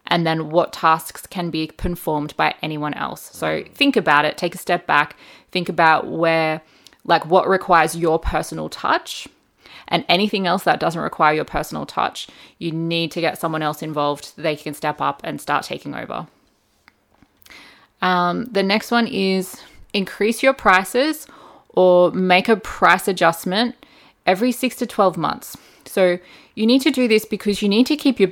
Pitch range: 170-200 Hz